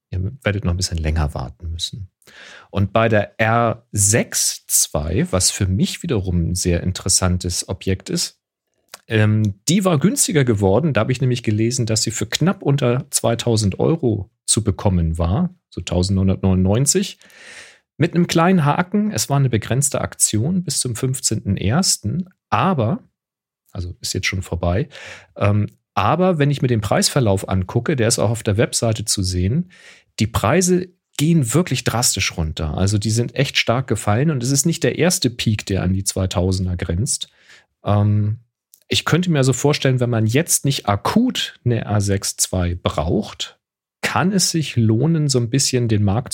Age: 40-59